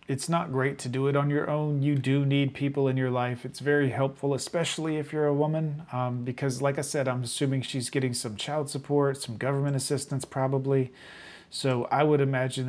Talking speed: 210 wpm